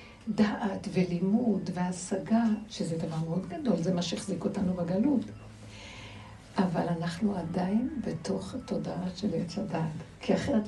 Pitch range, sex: 175-220 Hz, female